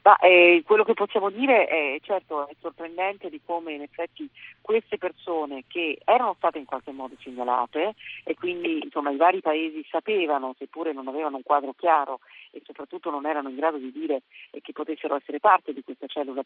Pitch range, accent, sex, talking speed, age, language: 145-180 Hz, native, female, 185 wpm, 40-59, Italian